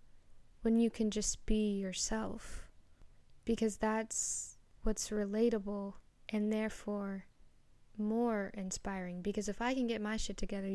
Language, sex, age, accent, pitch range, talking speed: English, female, 10-29, American, 205-245 Hz, 125 wpm